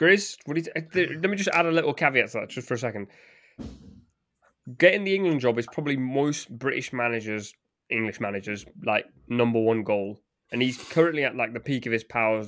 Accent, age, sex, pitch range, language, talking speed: British, 20-39, male, 110-135 Hz, English, 200 wpm